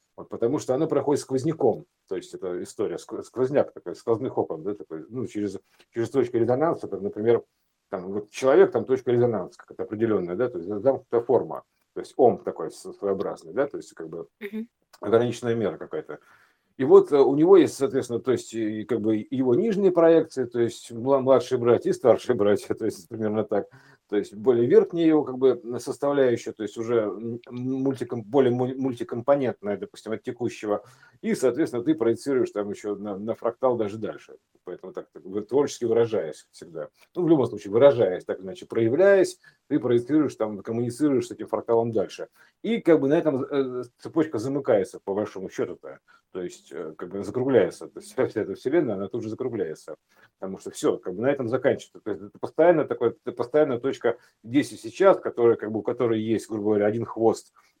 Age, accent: 50-69, native